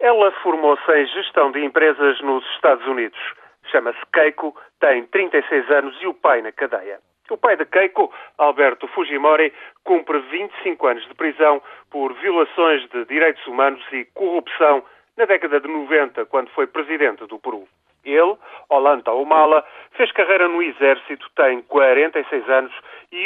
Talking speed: 145 wpm